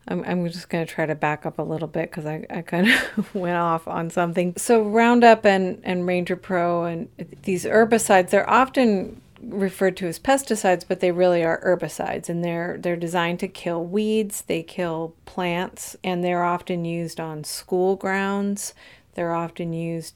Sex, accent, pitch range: female, American, 170-195 Hz